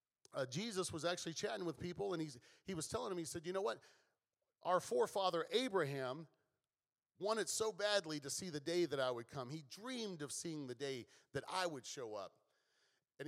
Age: 40-59